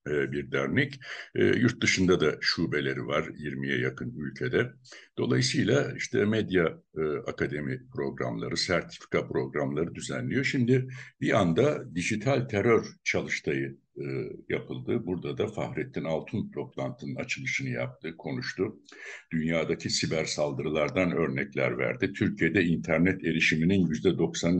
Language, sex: Turkish, male